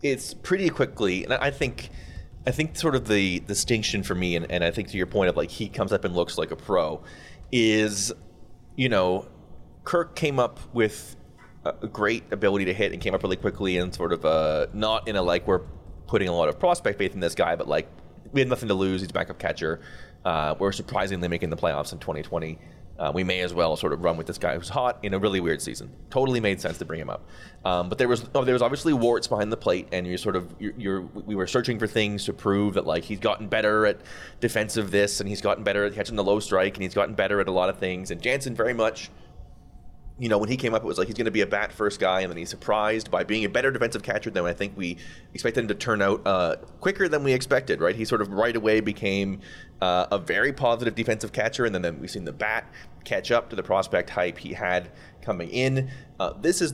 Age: 30-49